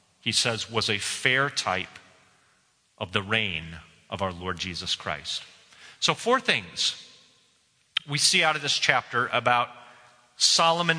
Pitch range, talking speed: 120-165 Hz, 135 wpm